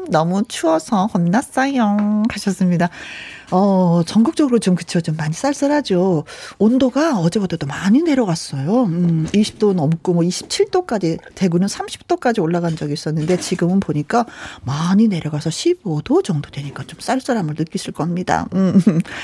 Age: 40-59